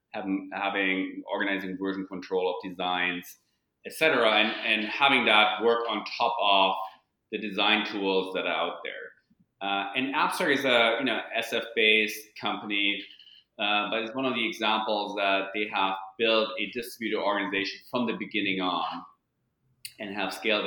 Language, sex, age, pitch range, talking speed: English, male, 30-49, 95-110 Hz, 160 wpm